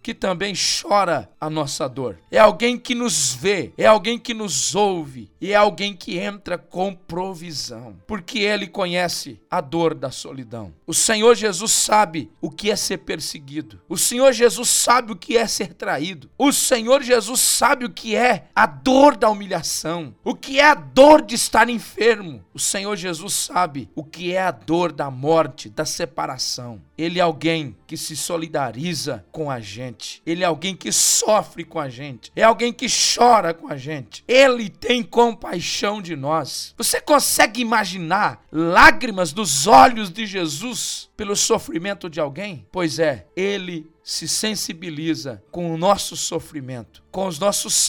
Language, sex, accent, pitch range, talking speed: Portuguese, male, Brazilian, 155-220 Hz, 165 wpm